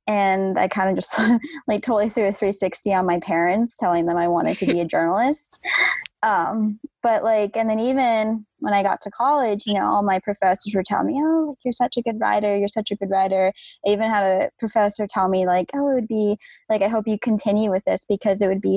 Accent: American